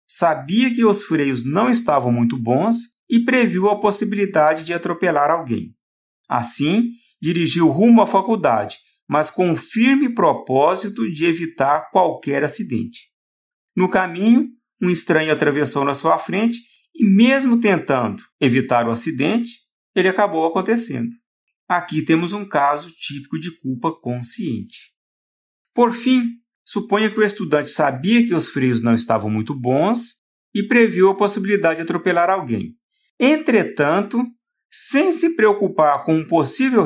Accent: Brazilian